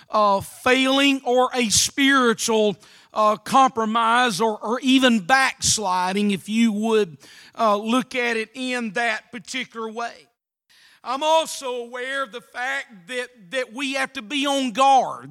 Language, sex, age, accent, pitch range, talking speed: English, male, 40-59, American, 220-265 Hz, 140 wpm